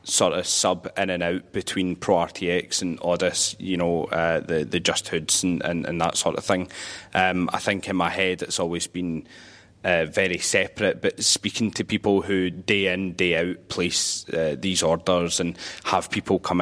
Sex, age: male, 20-39